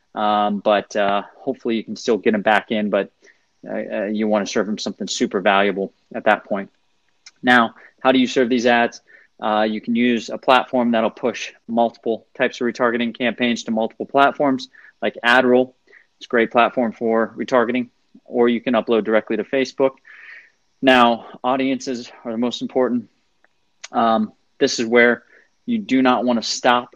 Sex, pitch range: male, 110-125 Hz